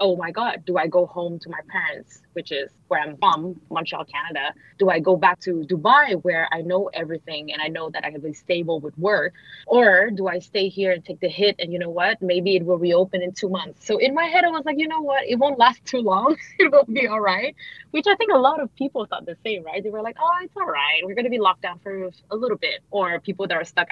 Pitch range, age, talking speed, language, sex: 175-235 Hz, 20-39, 275 wpm, English, female